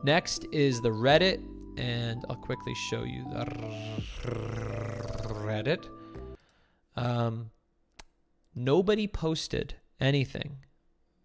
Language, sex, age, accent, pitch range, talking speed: English, male, 20-39, American, 120-140 Hz, 80 wpm